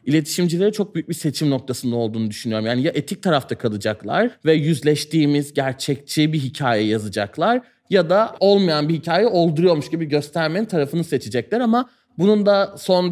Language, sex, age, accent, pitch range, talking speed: Turkish, male, 30-49, native, 140-185 Hz, 150 wpm